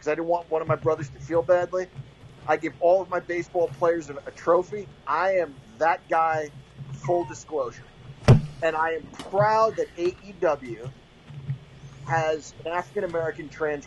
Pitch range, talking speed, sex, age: 140-210 Hz, 155 wpm, male, 30-49